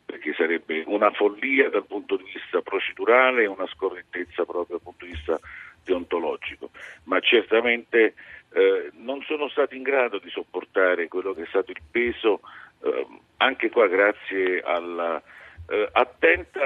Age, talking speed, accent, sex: 50-69, 140 wpm, native, male